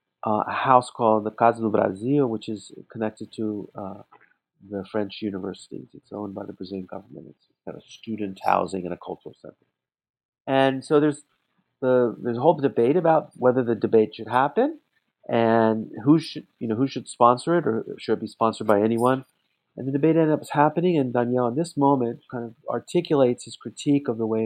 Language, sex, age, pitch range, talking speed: English, male, 50-69, 105-135 Hz, 195 wpm